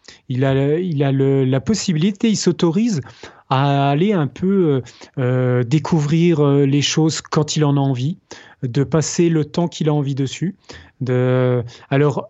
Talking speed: 155 wpm